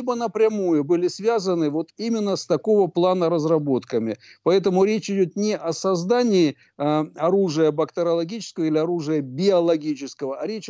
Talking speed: 130 wpm